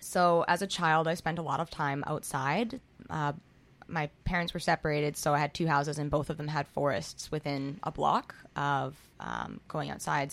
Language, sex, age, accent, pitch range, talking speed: English, female, 20-39, American, 145-160 Hz, 200 wpm